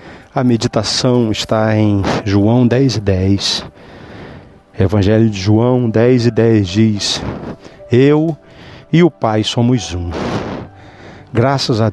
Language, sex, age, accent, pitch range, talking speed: Portuguese, male, 40-59, Brazilian, 100-120 Hz, 95 wpm